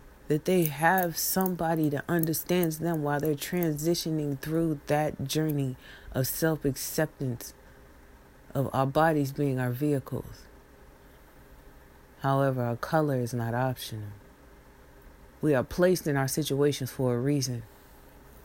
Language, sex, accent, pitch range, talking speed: English, female, American, 120-155 Hz, 115 wpm